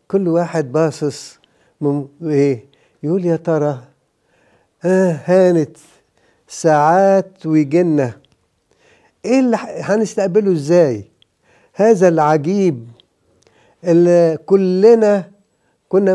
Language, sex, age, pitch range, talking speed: English, male, 50-69, 155-190 Hz, 60 wpm